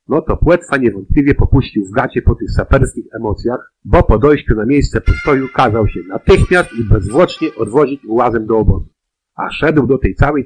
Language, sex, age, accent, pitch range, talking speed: Polish, male, 50-69, native, 110-145 Hz, 180 wpm